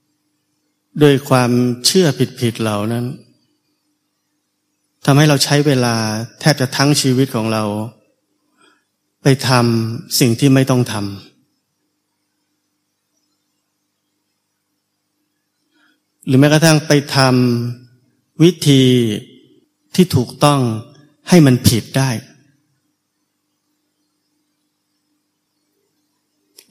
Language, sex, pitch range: Thai, male, 120-150 Hz